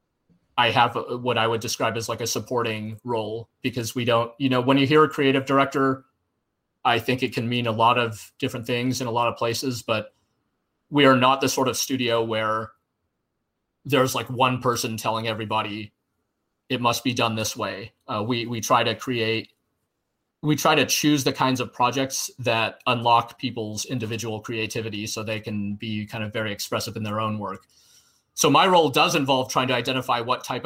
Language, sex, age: English, male, 30-49